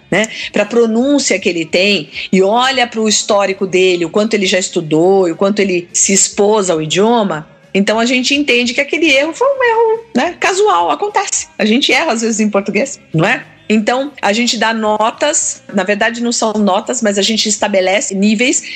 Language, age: Portuguese, 40-59